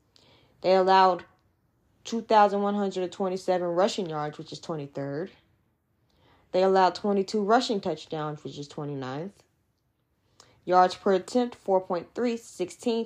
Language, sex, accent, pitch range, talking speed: English, female, American, 155-210 Hz, 90 wpm